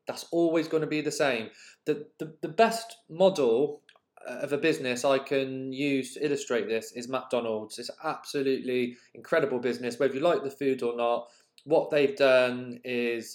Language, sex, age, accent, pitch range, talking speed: English, male, 20-39, British, 130-155 Hz, 175 wpm